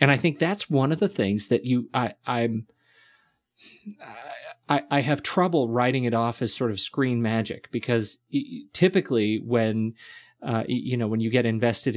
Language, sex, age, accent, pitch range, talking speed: English, male, 30-49, American, 110-145 Hz, 170 wpm